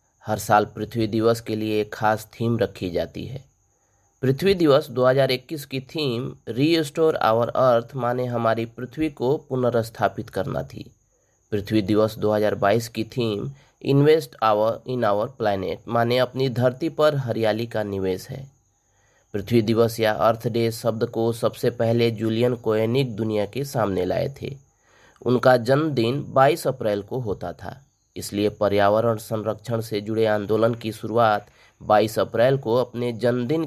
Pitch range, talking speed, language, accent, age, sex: 110-135 Hz, 145 wpm, Hindi, native, 30-49, male